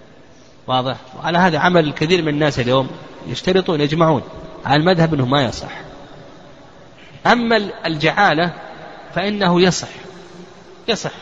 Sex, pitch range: male, 135-170 Hz